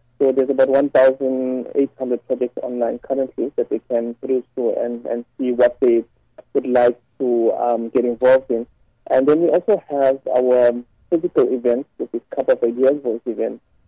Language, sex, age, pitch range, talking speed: English, male, 20-39, 120-135 Hz, 165 wpm